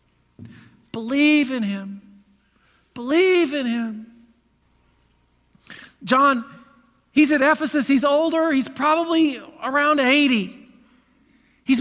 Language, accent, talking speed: English, American, 85 wpm